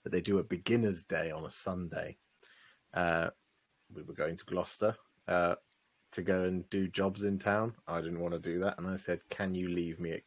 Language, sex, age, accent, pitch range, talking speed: English, male, 30-49, British, 85-100 Hz, 210 wpm